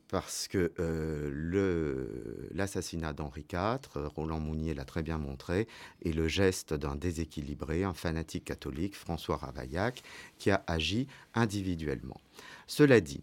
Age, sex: 50-69, male